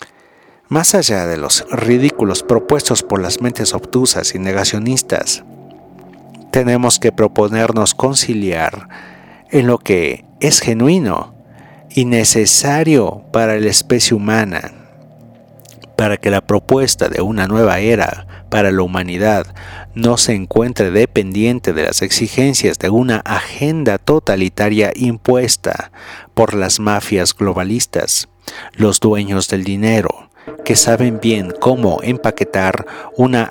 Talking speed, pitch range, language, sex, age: 115 wpm, 100-125 Hz, Spanish, male, 50-69